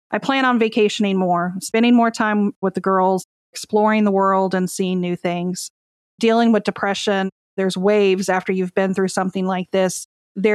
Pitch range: 190-235 Hz